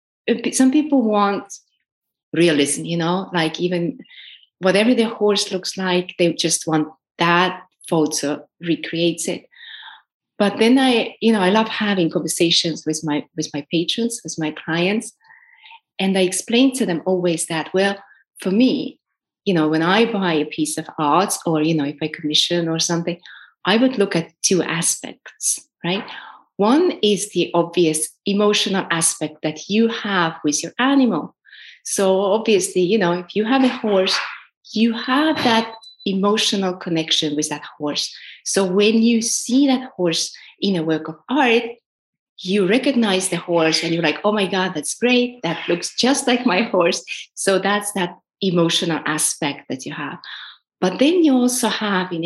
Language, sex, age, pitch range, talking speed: English, female, 30-49, 165-225 Hz, 165 wpm